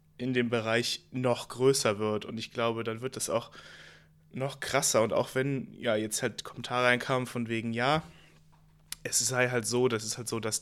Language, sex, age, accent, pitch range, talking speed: German, male, 20-39, German, 110-130 Hz, 200 wpm